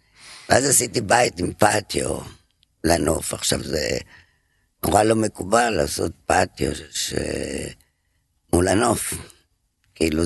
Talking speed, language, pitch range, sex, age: 100 wpm, Hebrew, 75-90 Hz, female, 60-79